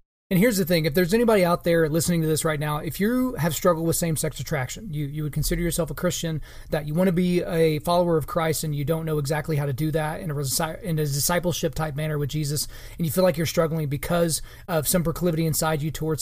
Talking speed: 250 wpm